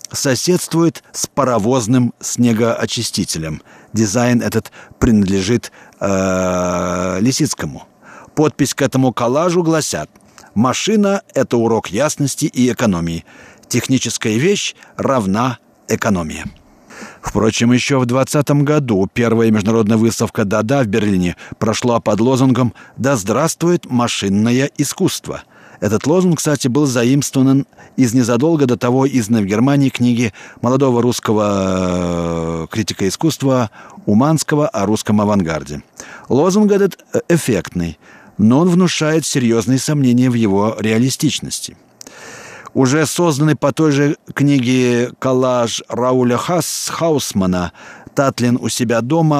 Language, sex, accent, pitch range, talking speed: Russian, male, native, 110-140 Hz, 110 wpm